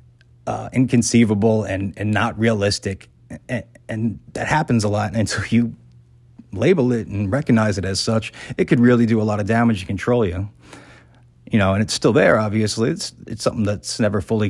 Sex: male